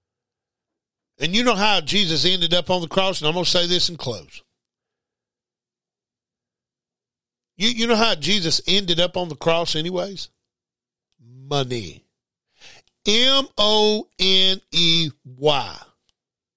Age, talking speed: 50-69, 110 wpm